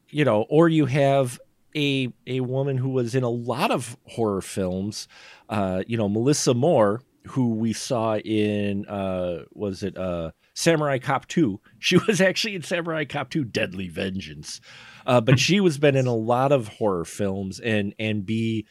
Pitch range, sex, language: 100-145 Hz, male, English